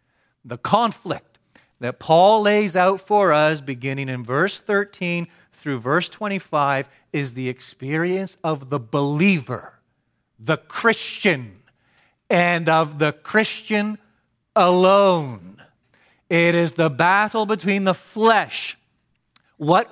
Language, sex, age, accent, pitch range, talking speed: English, male, 40-59, American, 145-195 Hz, 110 wpm